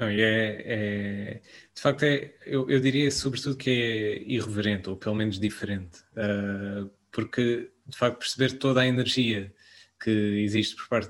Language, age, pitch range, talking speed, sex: Portuguese, 20-39, 105-125 Hz, 130 wpm, male